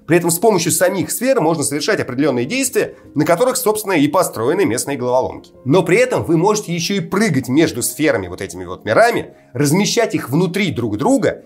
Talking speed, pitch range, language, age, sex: 190 wpm, 135-195 Hz, Russian, 30-49, male